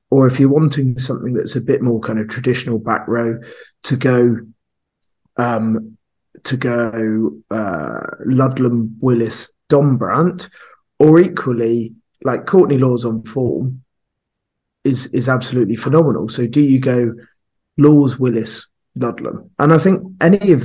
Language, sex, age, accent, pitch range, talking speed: English, male, 30-49, British, 120-140 Hz, 135 wpm